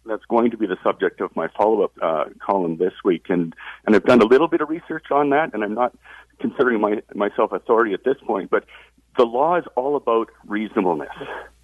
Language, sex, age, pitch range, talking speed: English, male, 50-69, 100-145 Hz, 210 wpm